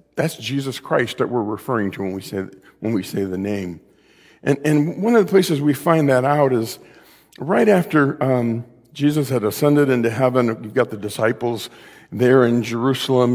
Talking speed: 185 wpm